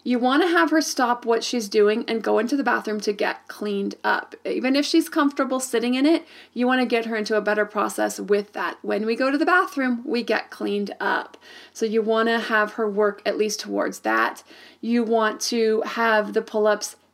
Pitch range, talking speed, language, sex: 215-260 Hz, 210 wpm, English, female